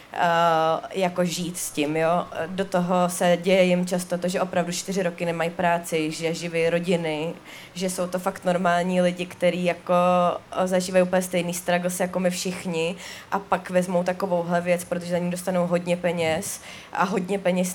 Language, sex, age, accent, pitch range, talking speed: Czech, female, 20-39, native, 175-205 Hz, 170 wpm